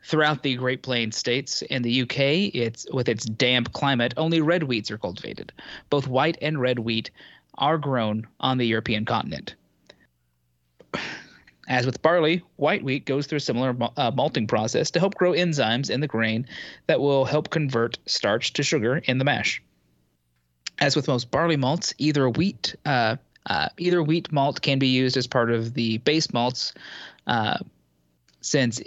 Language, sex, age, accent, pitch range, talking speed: English, male, 30-49, American, 115-145 Hz, 170 wpm